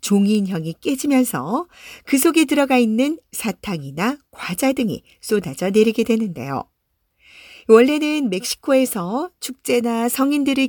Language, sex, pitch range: Korean, female, 185-275 Hz